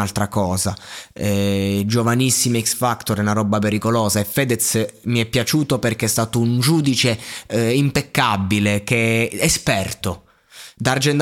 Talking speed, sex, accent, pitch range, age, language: 140 wpm, male, native, 105-130 Hz, 20-39, Italian